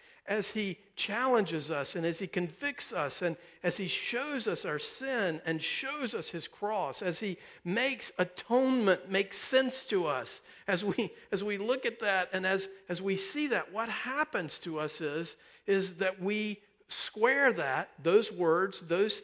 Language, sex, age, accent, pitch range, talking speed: English, male, 50-69, American, 180-250 Hz, 170 wpm